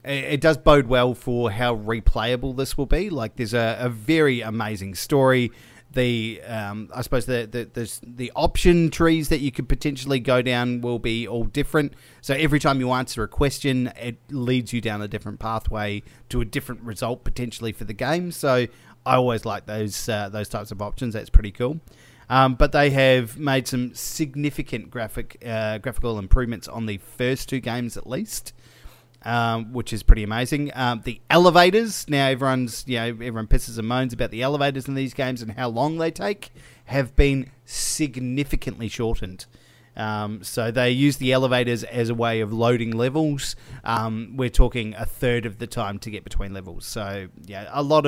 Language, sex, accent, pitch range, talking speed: English, male, Australian, 110-130 Hz, 185 wpm